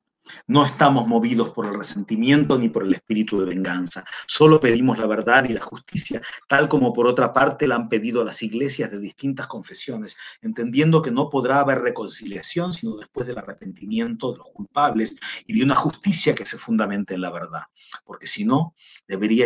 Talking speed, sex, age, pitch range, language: 180 wpm, male, 40-59, 100-140 Hz, Spanish